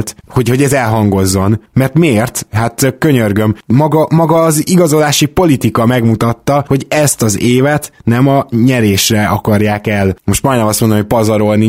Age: 20-39